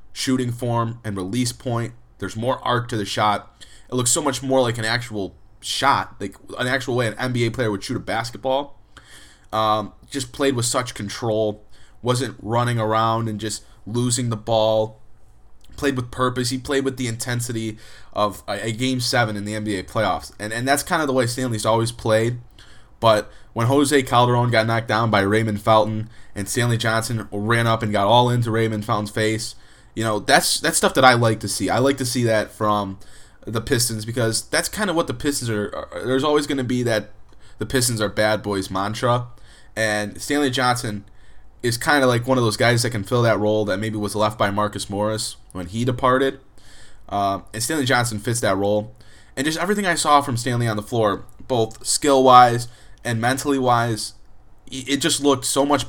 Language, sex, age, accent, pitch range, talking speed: English, male, 20-39, American, 105-125 Hz, 200 wpm